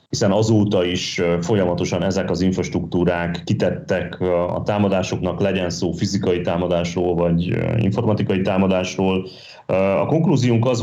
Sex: male